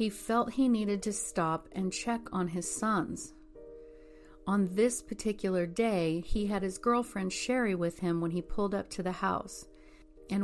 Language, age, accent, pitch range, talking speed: English, 40-59, American, 170-215 Hz, 170 wpm